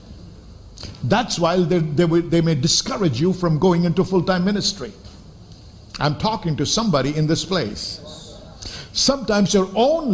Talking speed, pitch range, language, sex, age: 130 wpm, 145-235 Hz, English, male, 50-69